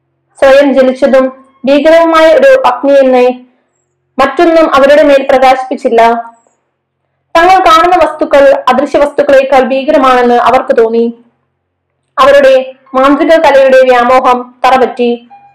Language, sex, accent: Malayalam, female, native